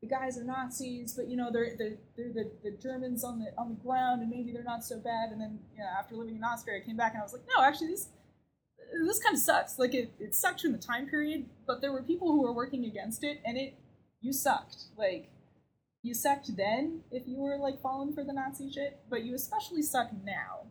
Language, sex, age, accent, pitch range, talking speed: English, female, 20-39, American, 220-275 Hz, 245 wpm